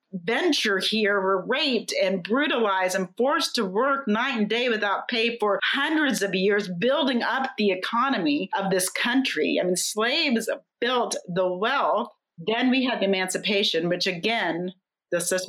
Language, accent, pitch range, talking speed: English, American, 185-235 Hz, 155 wpm